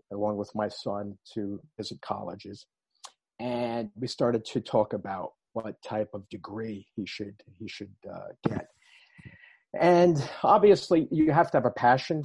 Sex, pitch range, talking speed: male, 105-130 Hz, 150 wpm